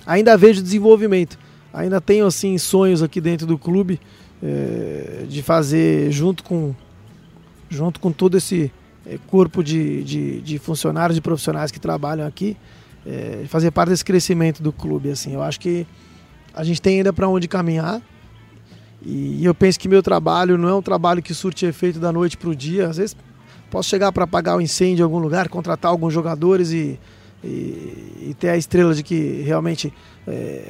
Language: Portuguese